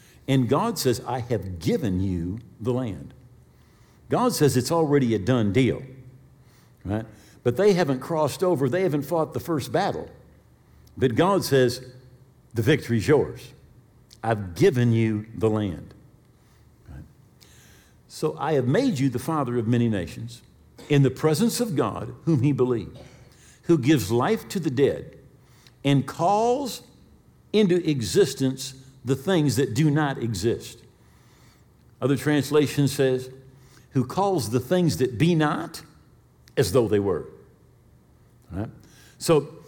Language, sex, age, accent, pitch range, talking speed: English, male, 50-69, American, 120-150 Hz, 135 wpm